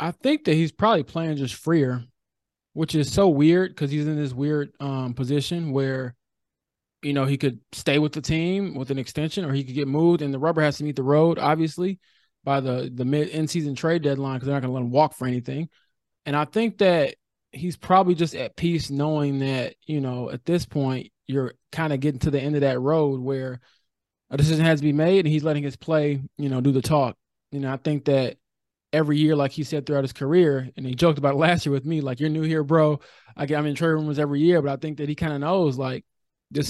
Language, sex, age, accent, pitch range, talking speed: English, male, 20-39, American, 140-160 Hz, 245 wpm